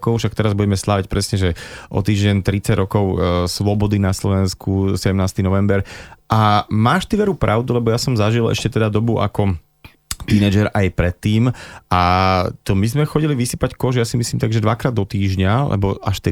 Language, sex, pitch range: Slovak, male, 95-110 Hz